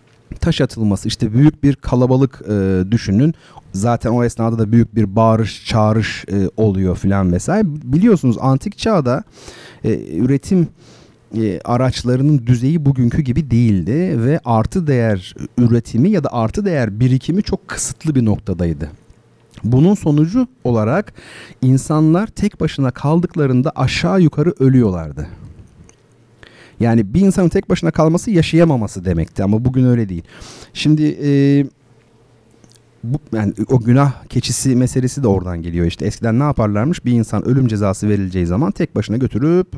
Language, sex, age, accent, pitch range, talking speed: Turkish, male, 40-59, native, 105-150 Hz, 135 wpm